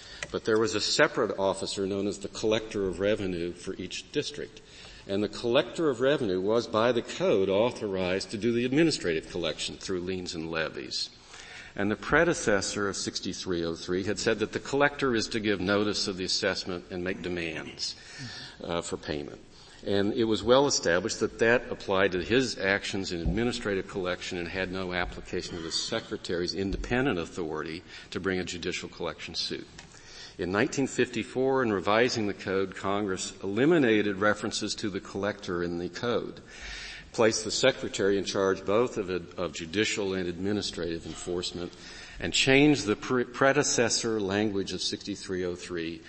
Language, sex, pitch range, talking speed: English, male, 90-110 Hz, 155 wpm